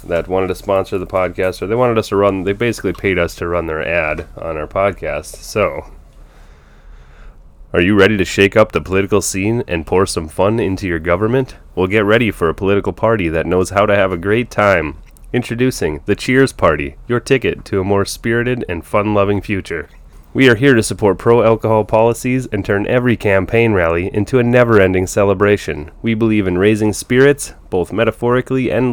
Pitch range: 90-115 Hz